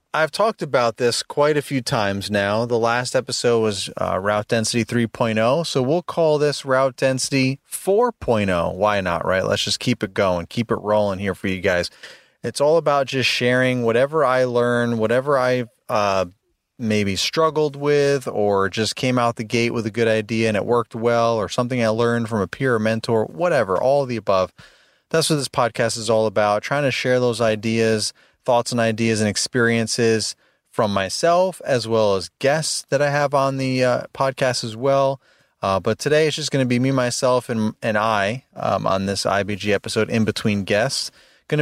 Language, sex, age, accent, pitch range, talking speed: English, male, 30-49, American, 110-135 Hz, 195 wpm